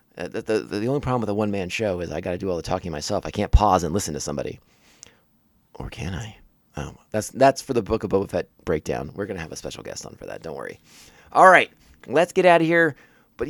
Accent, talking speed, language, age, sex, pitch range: American, 260 wpm, English, 30-49, male, 95-125 Hz